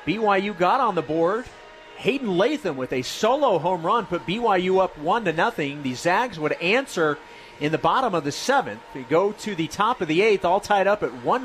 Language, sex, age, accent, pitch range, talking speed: English, male, 30-49, American, 155-205 Hz, 215 wpm